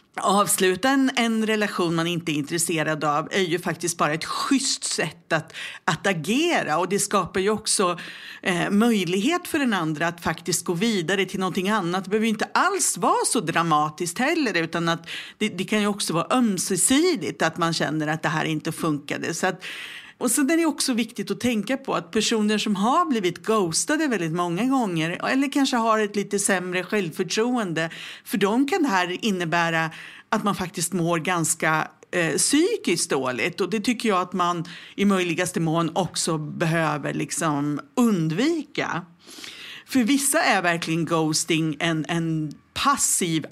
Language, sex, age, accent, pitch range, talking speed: English, female, 50-69, Swedish, 165-235 Hz, 170 wpm